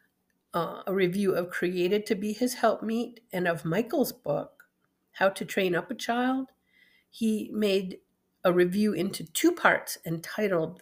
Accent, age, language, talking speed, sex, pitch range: American, 50-69, English, 150 wpm, female, 175-235 Hz